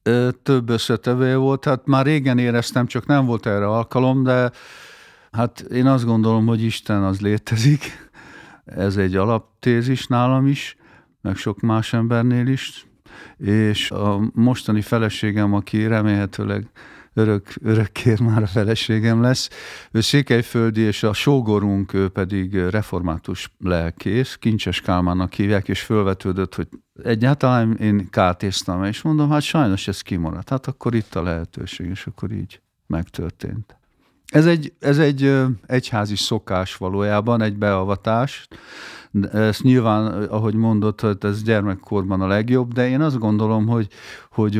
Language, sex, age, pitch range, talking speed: Hungarian, male, 50-69, 100-120 Hz, 135 wpm